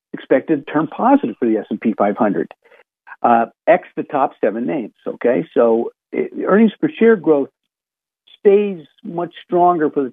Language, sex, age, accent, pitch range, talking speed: English, male, 50-69, American, 120-200 Hz, 140 wpm